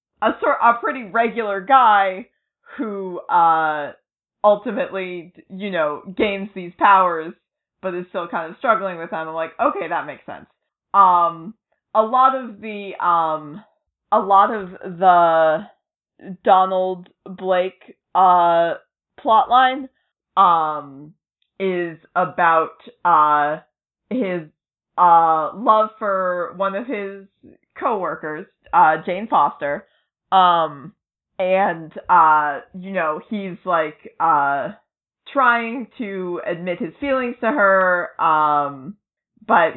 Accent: American